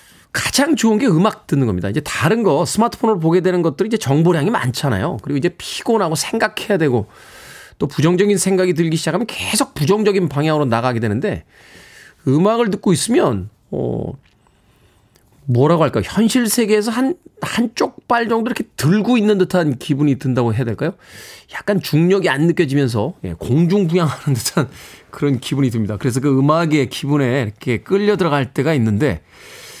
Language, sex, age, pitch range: Korean, male, 20-39, 110-175 Hz